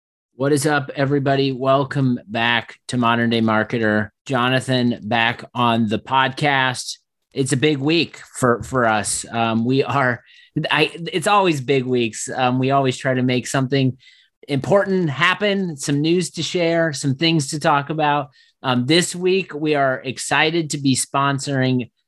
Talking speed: 155 wpm